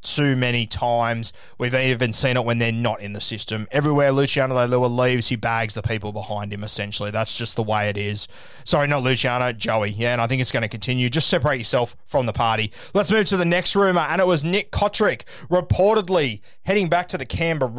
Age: 20-39